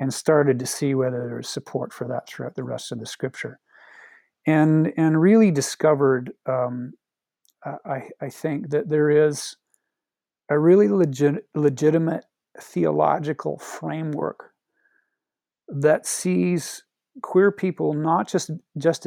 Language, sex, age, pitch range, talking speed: English, male, 40-59, 130-160 Hz, 125 wpm